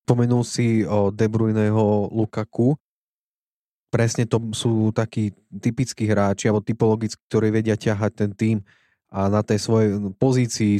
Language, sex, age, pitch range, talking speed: Slovak, male, 20-39, 105-115 Hz, 135 wpm